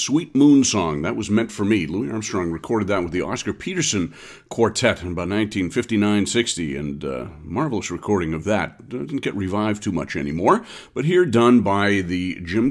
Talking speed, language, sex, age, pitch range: 190 wpm, English, male, 50-69, 95-125 Hz